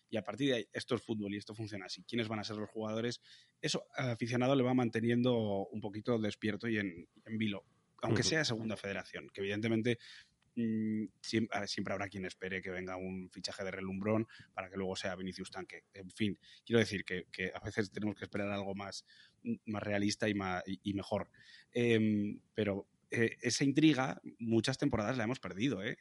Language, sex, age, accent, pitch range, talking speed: Spanish, male, 20-39, Spanish, 100-115 Hz, 190 wpm